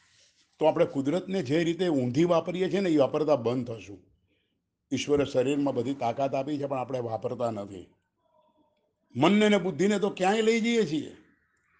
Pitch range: 125-175 Hz